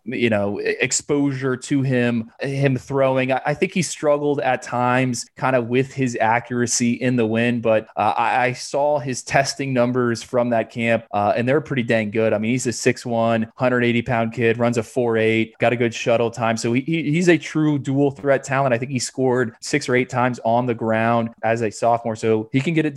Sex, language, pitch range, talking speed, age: male, English, 115-130 Hz, 210 wpm, 20-39